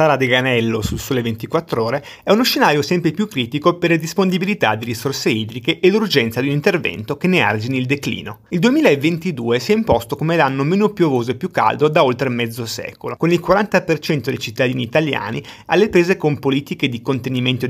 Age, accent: 30-49, native